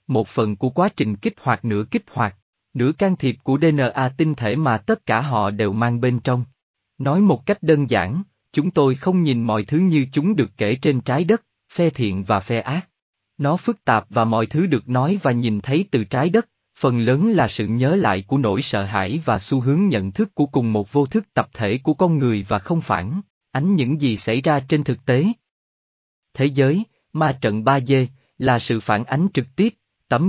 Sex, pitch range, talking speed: male, 110-155 Hz, 220 wpm